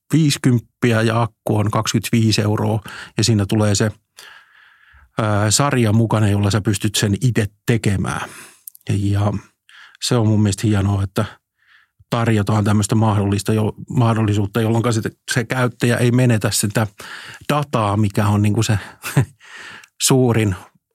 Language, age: Finnish, 50-69